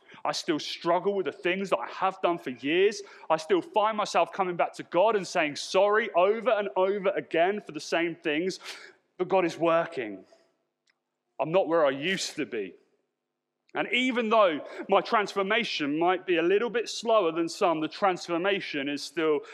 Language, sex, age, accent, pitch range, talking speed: English, male, 30-49, British, 145-215 Hz, 180 wpm